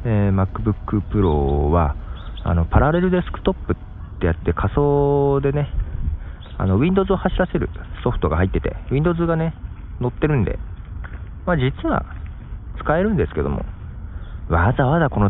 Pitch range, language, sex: 85-130 Hz, Japanese, male